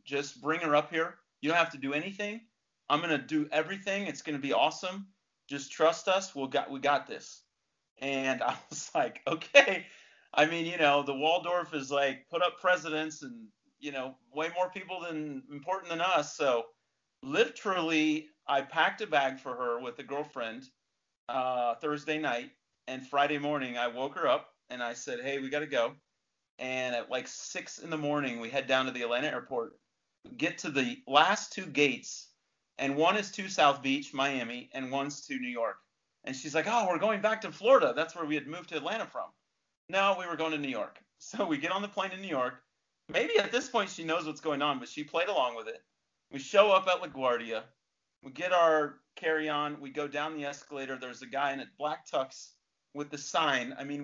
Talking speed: 210 wpm